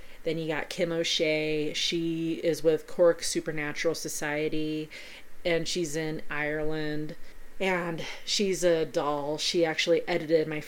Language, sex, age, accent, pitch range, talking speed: English, female, 30-49, American, 155-215 Hz, 130 wpm